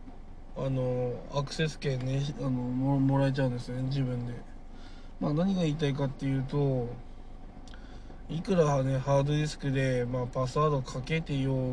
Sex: male